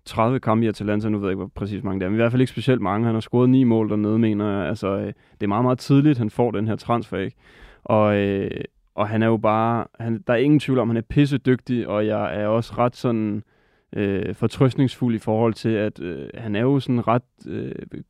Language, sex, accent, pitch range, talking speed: Danish, male, native, 105-120 Hz, 250 wpm